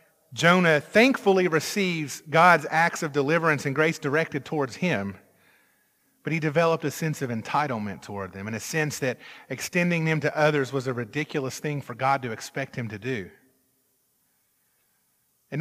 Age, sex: 40-59, male